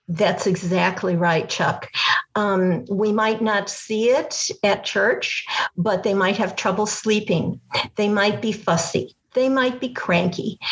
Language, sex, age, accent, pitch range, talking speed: English, female, 50-69, American, 195-245 Hz, 145 wpm